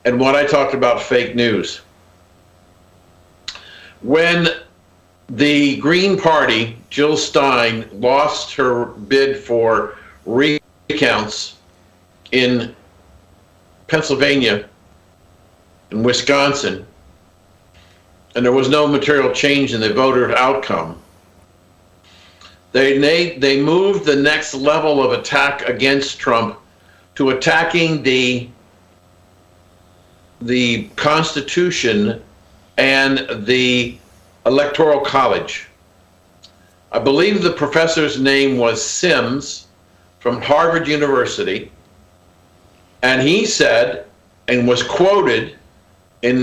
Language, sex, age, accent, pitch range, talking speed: English, male, 50-69, American, 90-145 Hz, 90 wpm